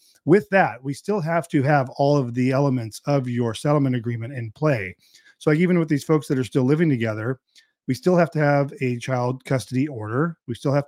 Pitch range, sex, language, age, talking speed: 125-150 Hz, male, English, 40-59, 220 wpm